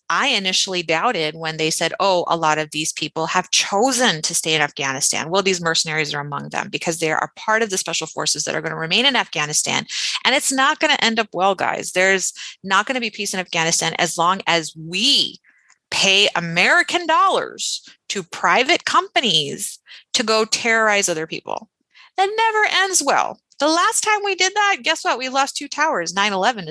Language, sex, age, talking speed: English, female, 30-49, 200 wpm